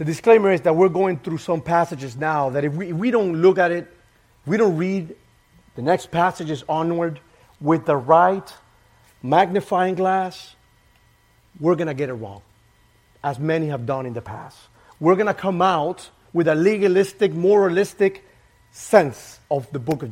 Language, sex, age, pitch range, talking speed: English, male, 30-49, 120-185 Hz, 170 wpm